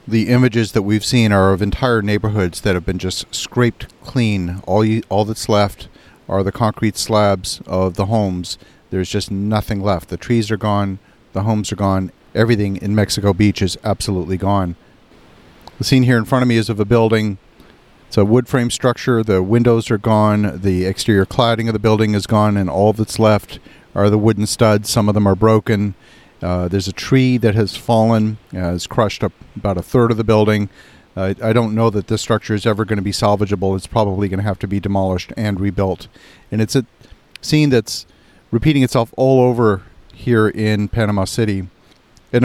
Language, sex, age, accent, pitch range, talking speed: English, male, 50-69, American, 100-115 Hz, 200 wpm